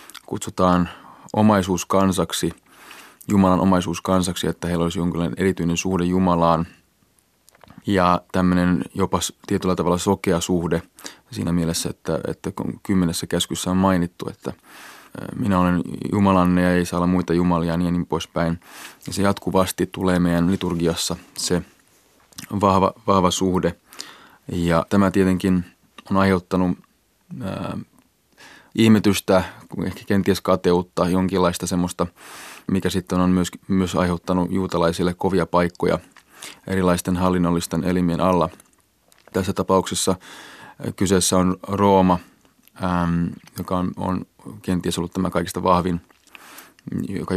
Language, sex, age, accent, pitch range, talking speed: Finnish, male, 20-39, native, 85-95 Hz, 115 wpm